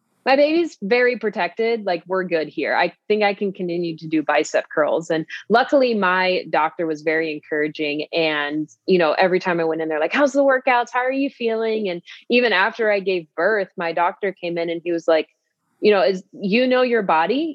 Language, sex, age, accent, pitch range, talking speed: English, female, 20-39, American, 170-220 Hz, 210 wpm